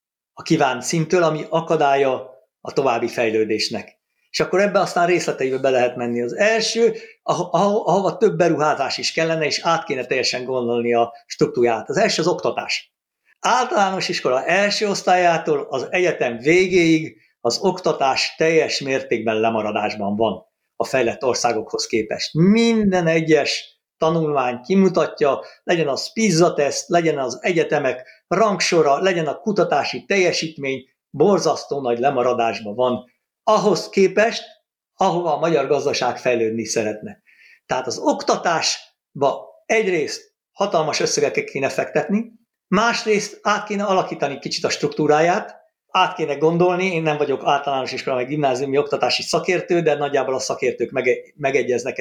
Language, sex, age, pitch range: Hungarian, male, 60-79, 130-195 Hz